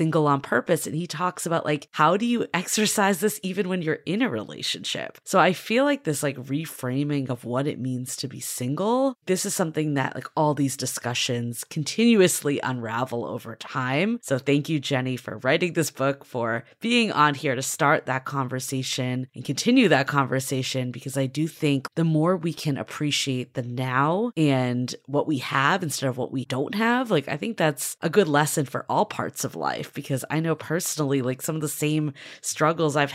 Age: 20-39